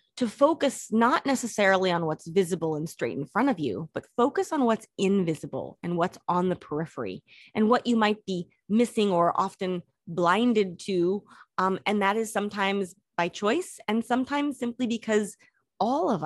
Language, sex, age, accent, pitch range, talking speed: English, female, 30-49, American, 170-220 Hz, 170 wpm